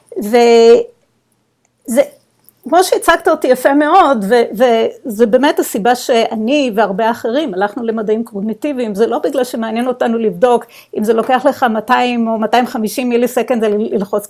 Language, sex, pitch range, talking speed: Hebrew, female, 220-275 Hz, 135 wpm